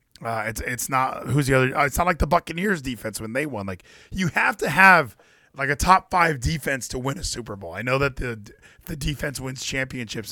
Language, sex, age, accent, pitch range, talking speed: English, male, 20-39, American, 115-160 Hz, 225 wpm